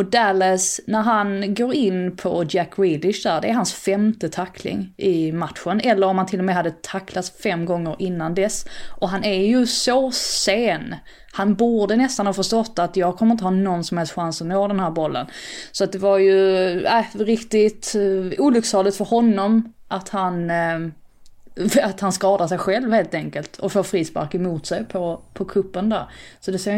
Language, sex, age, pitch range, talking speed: Swedish, female, 20-39, 175-210 Hz, 195 wpm